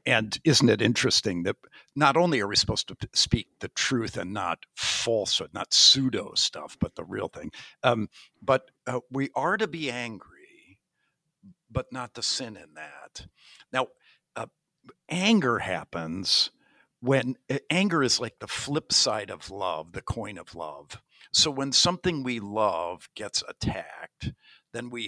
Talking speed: 155 wpm